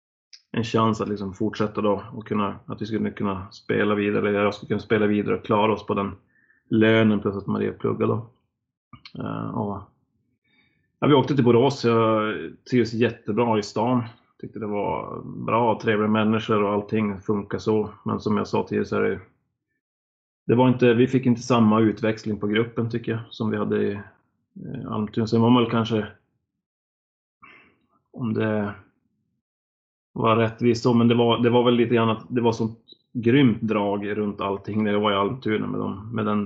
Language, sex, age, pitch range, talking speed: Swedish, male, 30-49, 105-115 Hz, 185 wpm